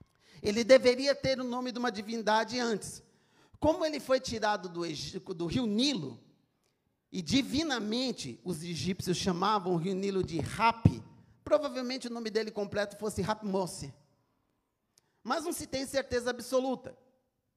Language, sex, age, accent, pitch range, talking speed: Portuguese, male, 40-59, Brazilian, 200-260 Hz, 140 wpm